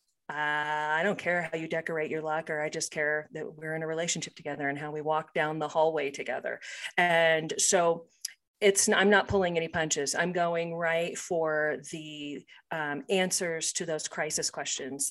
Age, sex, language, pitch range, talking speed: 40-59, female, English, 150-185 Hz, 185 wpm